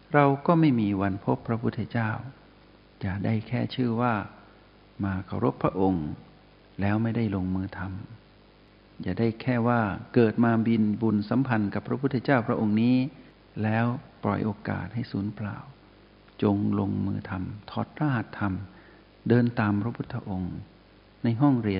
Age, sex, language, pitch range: 60-79, male, Thai, 100-115 Hz